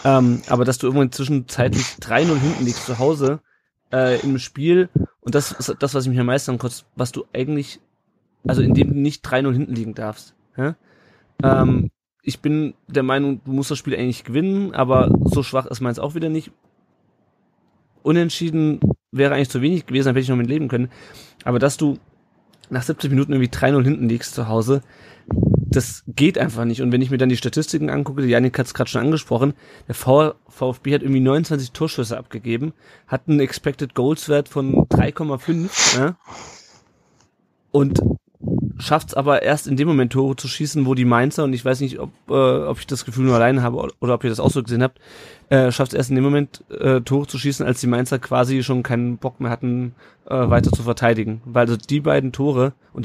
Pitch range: 120-140 Hz